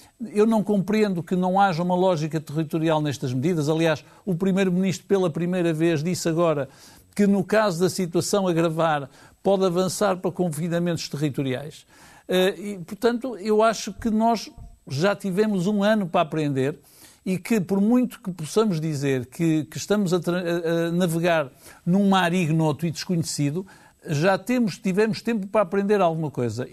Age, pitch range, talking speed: 60-79, 160-210 Hz, 150 wpm